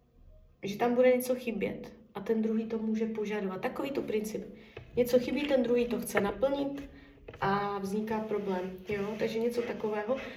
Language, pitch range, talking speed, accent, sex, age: Czech, 210-255 Hz, 160 wpm, native, female, 20-39